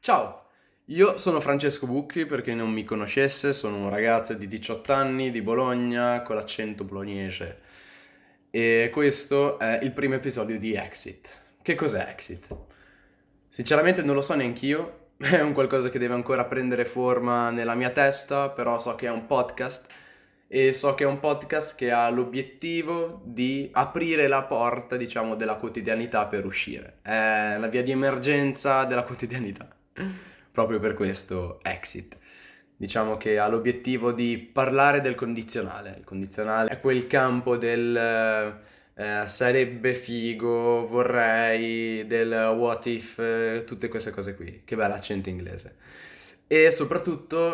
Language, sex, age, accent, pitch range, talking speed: Italian, male, 20-39, native, 110-135 Hz, 145 wpm